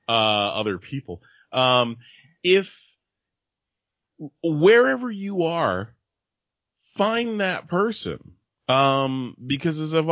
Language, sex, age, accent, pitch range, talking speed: English, male, 30-49, American, 100-145 Hz, 90 wpm